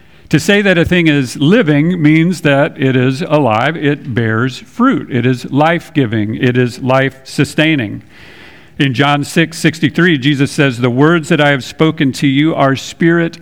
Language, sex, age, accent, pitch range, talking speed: English, male, 50-69, American, 125-150 Hz, 165 wpm